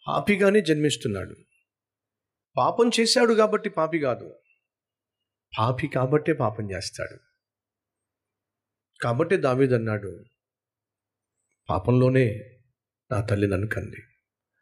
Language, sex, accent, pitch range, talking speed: Telugu, male, native, 110-165 Hz, 70 wpm